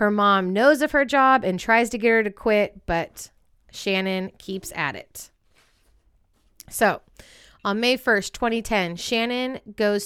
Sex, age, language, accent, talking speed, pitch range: female, 30-49, English, American, 150 wpm, 185-225 Hz